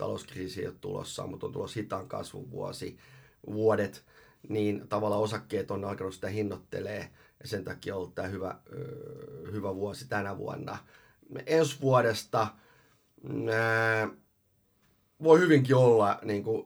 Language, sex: Finnish, male